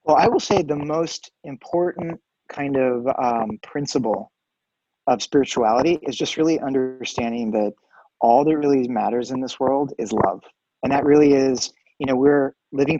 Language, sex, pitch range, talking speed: English, male, 130-160 Hz, 160 wpm